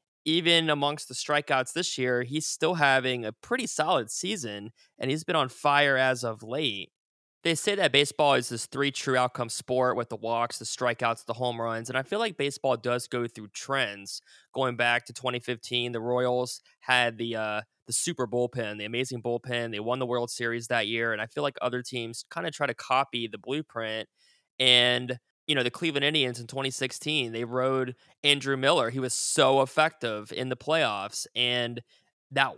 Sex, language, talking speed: male, English, 190 wpm